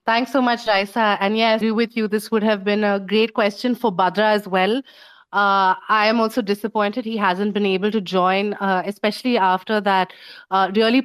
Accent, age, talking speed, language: Indian, 30-49, 195 wpm, English